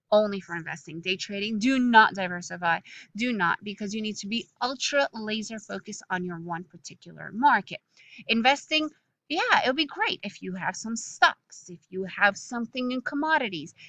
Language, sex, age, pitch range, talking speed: English, female, 30-49, 195-260 Hz, 170 wpm